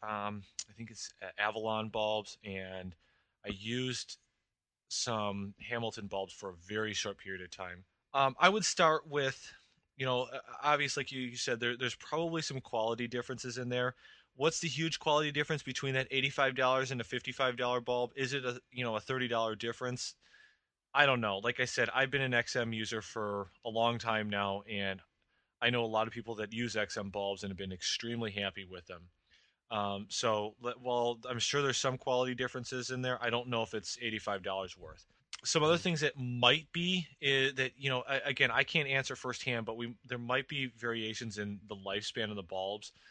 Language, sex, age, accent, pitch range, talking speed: English, male, 20-39, American, 105-130 Hz, 190 wpm